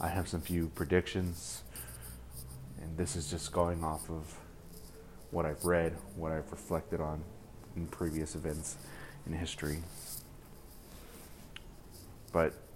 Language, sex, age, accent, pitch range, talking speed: English, male, 30-49, American, 80-100 Hz, 120 wpm